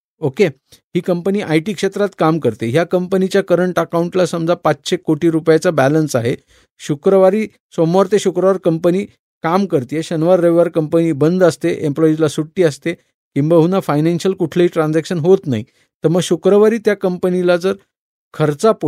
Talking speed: 145 wpm